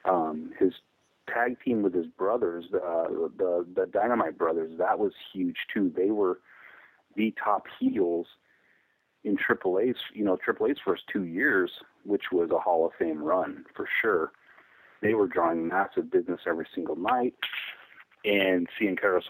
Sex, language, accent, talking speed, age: male, English, American, 155 wpm, 30-49